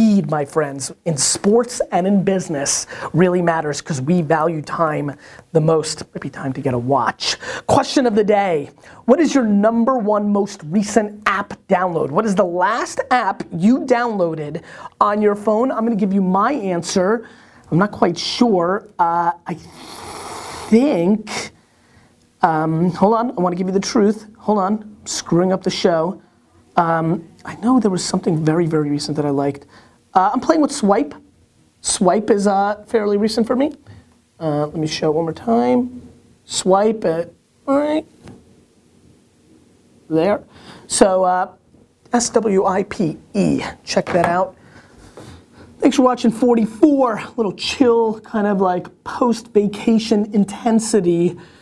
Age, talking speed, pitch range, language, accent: 30-49, 150 wpm, 170-230 Hz, English, American